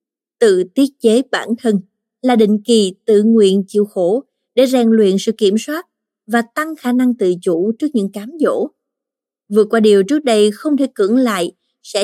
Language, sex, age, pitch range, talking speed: Vietnamese, female, 20-39, 205-255 Hz, 190 wpm